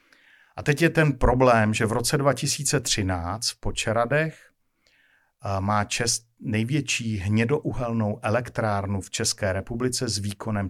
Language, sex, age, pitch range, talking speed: Czech, male, 50-69, 100-120 Hz, 110 wpm